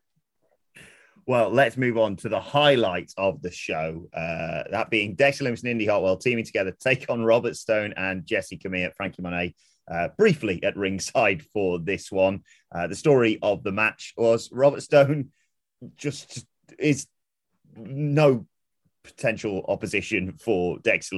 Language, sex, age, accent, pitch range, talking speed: English, male, 30-49, British, 90-125 Hz, 155 wpm